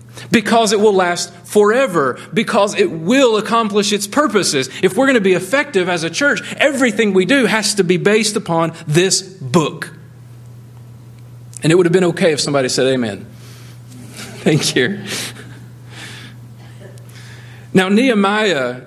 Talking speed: 140 wpm